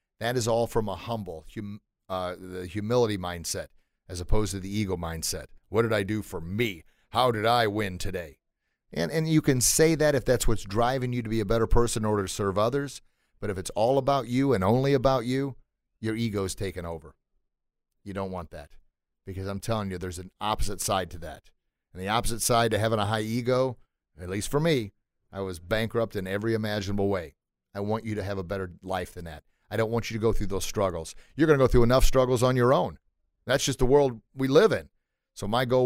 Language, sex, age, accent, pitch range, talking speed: English, male, 40-59, American, 100-130 Hz, 230 wpm